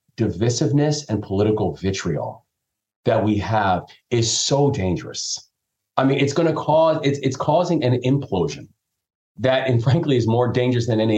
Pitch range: 100-130 Hz